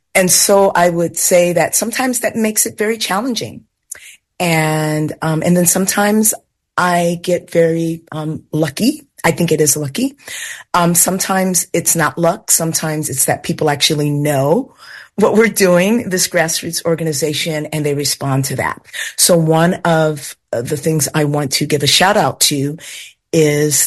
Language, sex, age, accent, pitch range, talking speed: English, female, 40-59, American, 145-175 Hz, 160 wpm